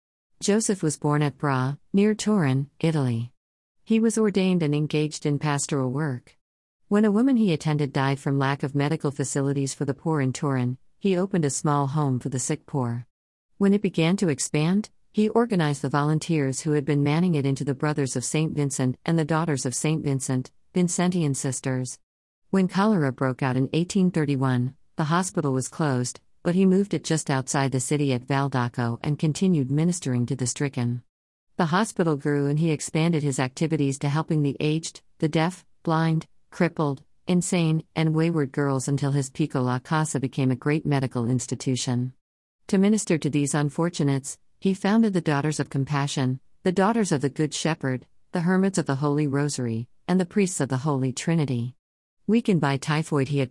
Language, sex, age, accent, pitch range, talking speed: Malayalam, female, 50-69, American, 130-165 Hz, 180 wpm